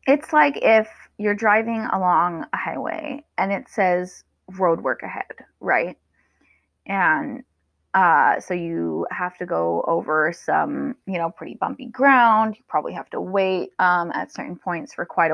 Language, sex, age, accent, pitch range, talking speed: English, female, 20-39, American, 175-235 Hz, 155 wpm